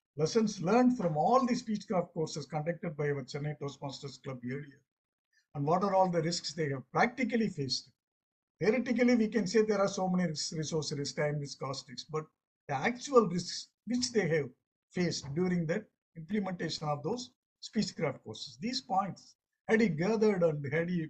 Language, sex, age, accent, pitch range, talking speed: English, male, 50-69, Indian, 140-195 Hz, 175 wpm